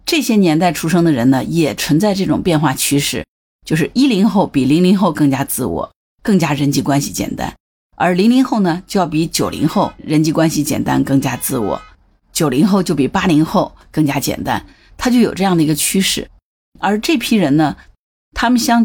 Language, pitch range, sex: Chinese, 150-215 Hz, female